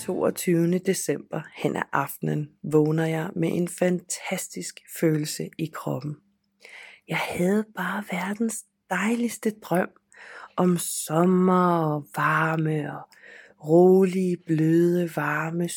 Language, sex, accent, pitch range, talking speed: Danish, female, native, 160-205 Hz, 105 wpm